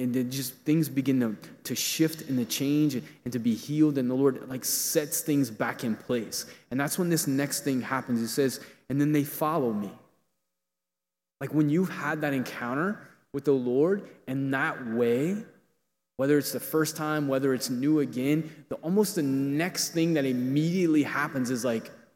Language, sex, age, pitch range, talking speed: English, male, 20-39, 115-150 Hz, 185 wpm